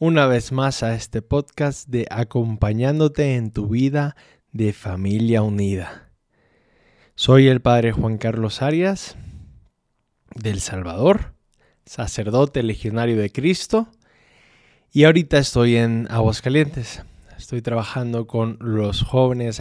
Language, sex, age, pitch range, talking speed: Spanish, male, 20-39, 115-145 Hz, 110 wpm